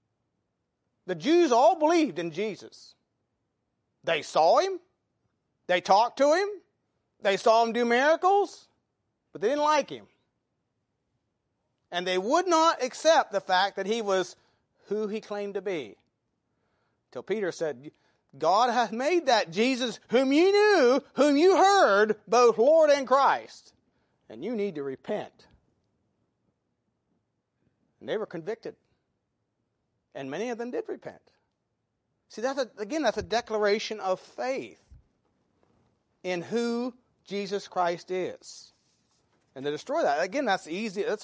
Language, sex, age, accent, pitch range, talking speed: English, male, 40-59, American, 180-265 Hz, 135 wpm